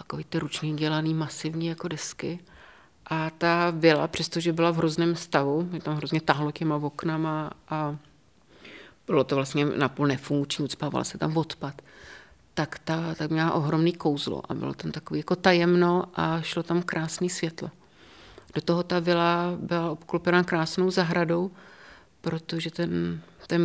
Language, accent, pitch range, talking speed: Czech, native, 155-170 Hz, 155 wpm